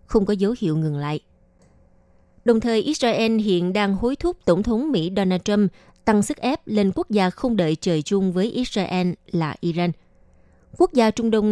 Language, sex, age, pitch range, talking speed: Vietnamese, female, 20-39, 175-230 Hz, 190 wpm